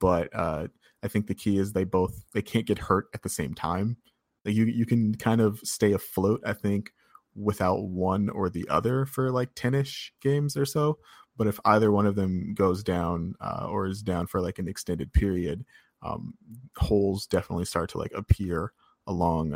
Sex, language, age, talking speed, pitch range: male, English, 20-39, 195 wpm, 90-105 Hz